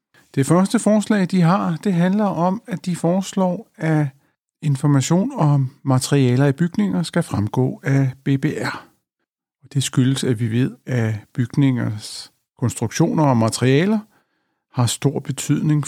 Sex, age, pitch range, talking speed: male, 60-79, 115-150 Hz, 130 wpm